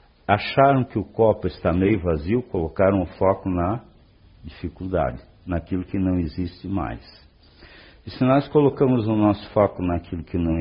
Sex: male